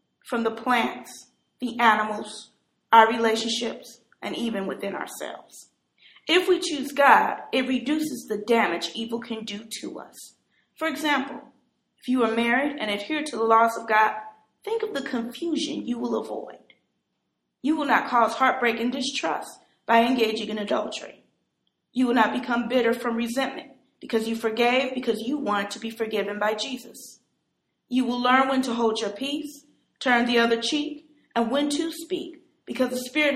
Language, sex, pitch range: English, female, 225-275 Hz